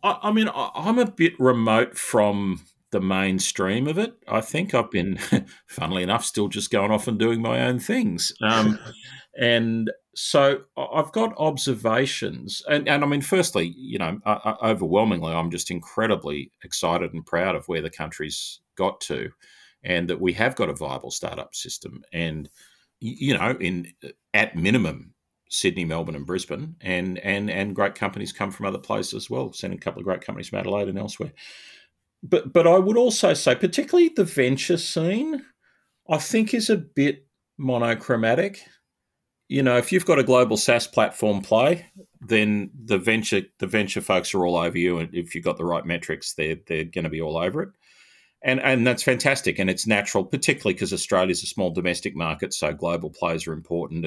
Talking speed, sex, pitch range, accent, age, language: 180 wpm, male, 90-145 Hz, Australian, 40-59, English